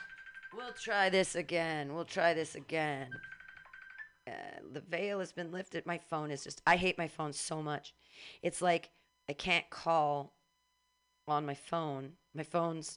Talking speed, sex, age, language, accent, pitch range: 155 wpm, female, 40-59, English, American, 145-205 Hz